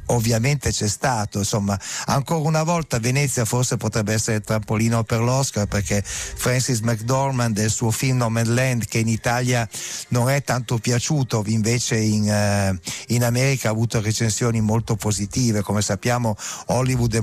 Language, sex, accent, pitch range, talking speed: Italian, male, native, 110-135 Hz, 155 wpm